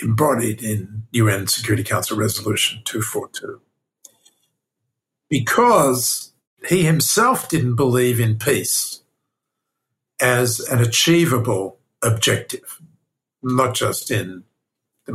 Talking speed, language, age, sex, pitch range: 85 wpm, English, 60-79, male, 110-140 Hz